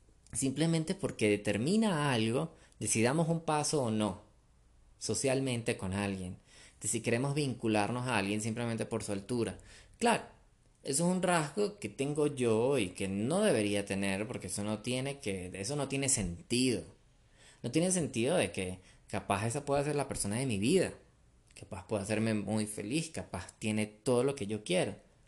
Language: Spanish